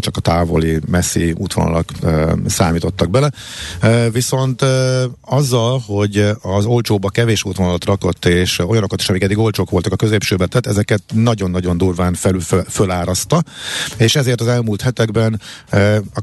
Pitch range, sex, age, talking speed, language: 90-120 Hz, male, 50-69, 150 wpm, Hungarian